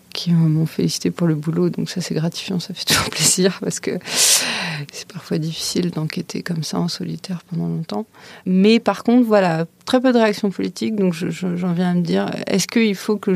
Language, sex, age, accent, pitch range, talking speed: French, female, 30-49, French, 165-200 Hz, 210 wpm